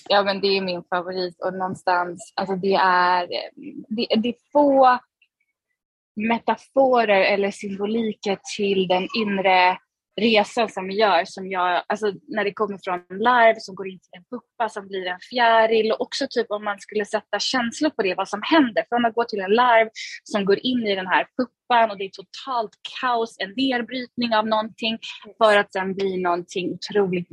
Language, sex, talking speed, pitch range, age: Swedish, female, 190 wpm, 185-225 Hz, 20-39